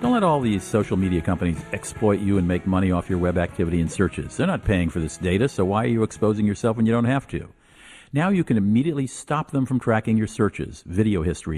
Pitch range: 90-120 Hz